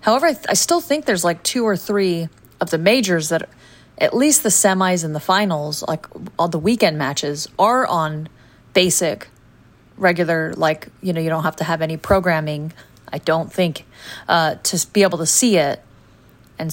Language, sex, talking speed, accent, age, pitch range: English, female, 185 wpm, American, 30-49, 160-200 Hz